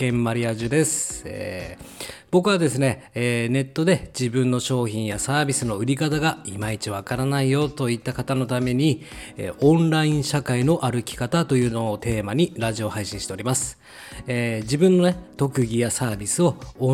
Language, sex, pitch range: Japanese, male, 110-145 Hz